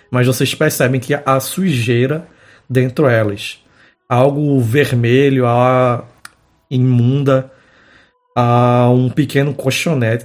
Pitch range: 125-140 Hz